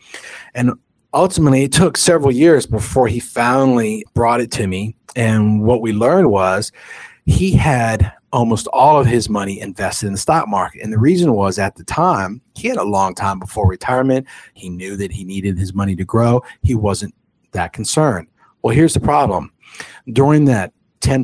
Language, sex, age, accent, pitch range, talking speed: English, male, 40-59, American, 100-135 Hz, 180 wpm